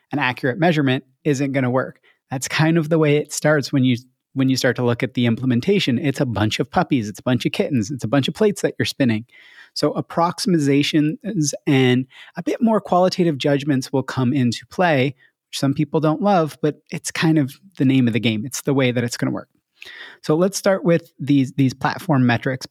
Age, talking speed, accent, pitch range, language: 30-49, 215 wpm, American, 130-165 Hz, English